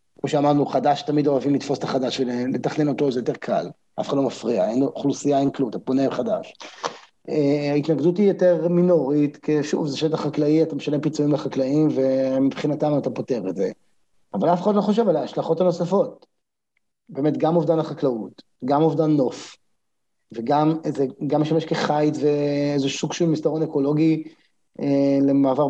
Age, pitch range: 30-49, 145-170 Hz